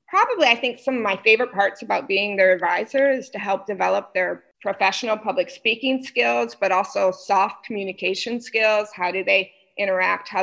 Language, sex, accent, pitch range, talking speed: English, female, American, 195-275 Hz, 180 wpm